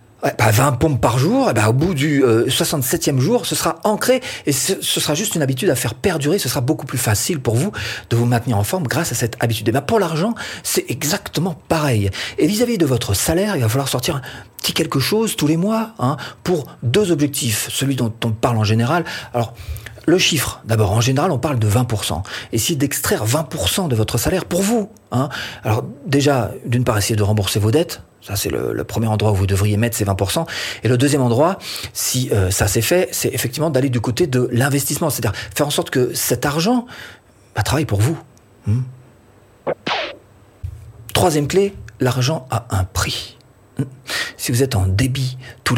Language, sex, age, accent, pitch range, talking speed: French, male, 40-59, French, 110-155 Hz, 205 wpm